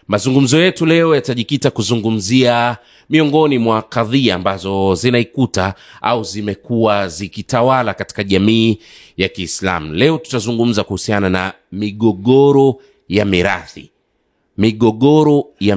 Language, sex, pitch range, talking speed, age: Swahili, male, 100-125 Hz, 100 wpm, 30-49